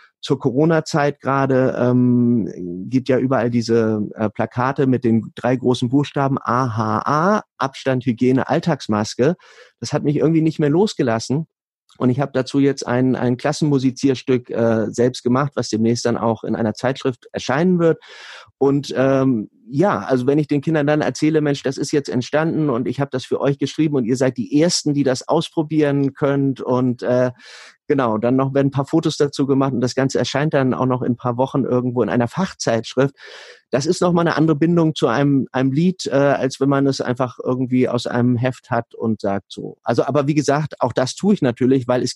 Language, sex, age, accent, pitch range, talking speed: German, male, 30-49, German, 120-140 Hz, 195 wpm